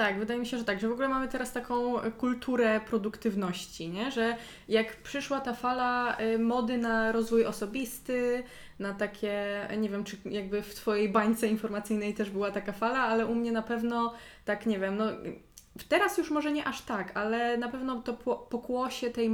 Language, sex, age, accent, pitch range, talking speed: Polish, female, 20-39, native, 205-235 Hz, 185 wpm